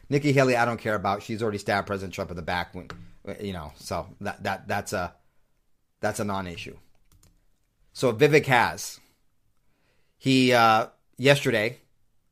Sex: male